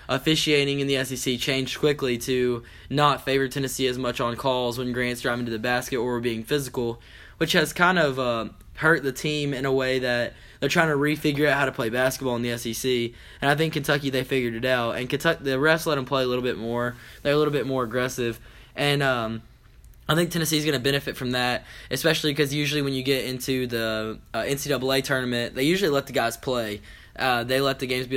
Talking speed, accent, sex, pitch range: 225 wpm, American, male, 120-140 Hz